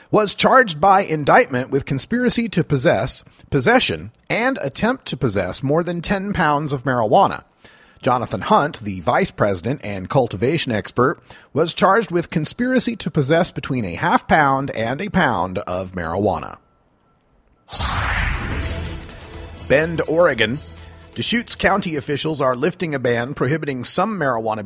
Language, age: English, 40-59